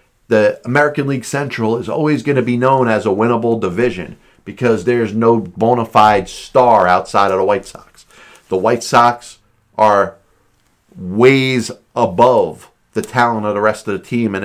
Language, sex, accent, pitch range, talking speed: English, male, American, 105-125 Hz, 165 wpm